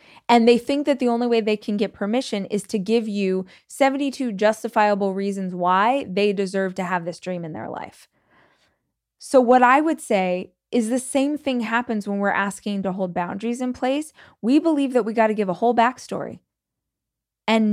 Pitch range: 180-235 Hz